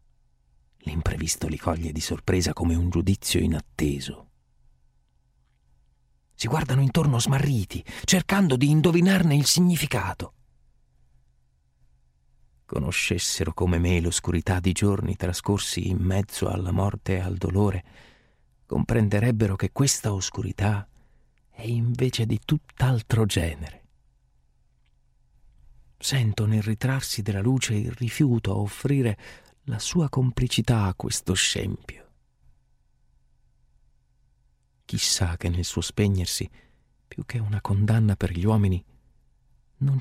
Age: 40-59